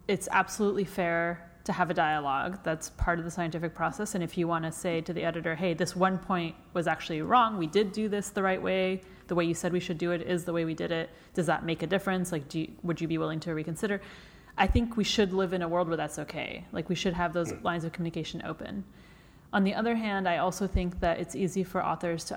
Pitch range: 165-185 Hz